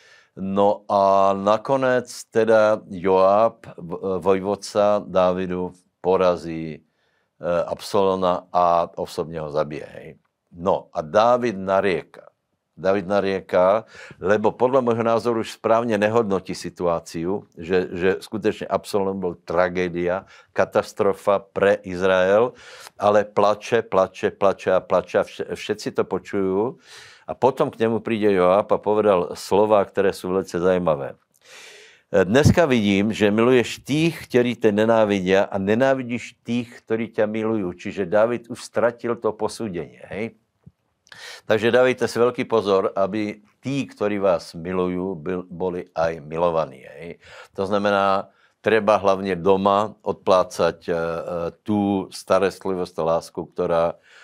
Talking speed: 115 wpm